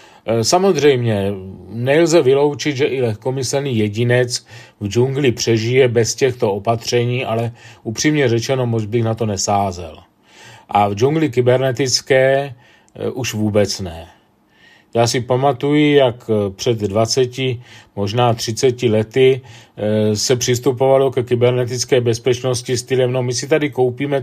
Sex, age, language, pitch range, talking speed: male, 40-59, Czech, 110-135 Hz, 120 wpm